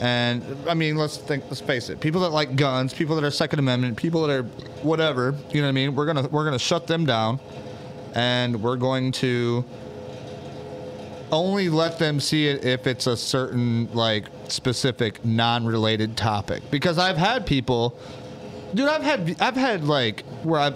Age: 30-49